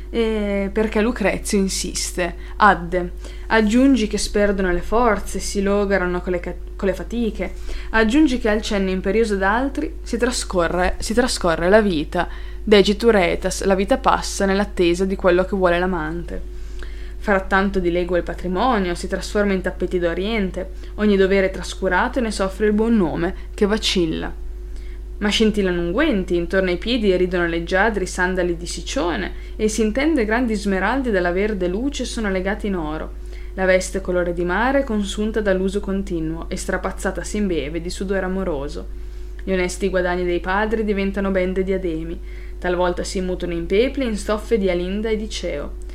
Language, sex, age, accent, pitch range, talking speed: Italian, female, 20-39, native, 180-215 Hz, 155 wpm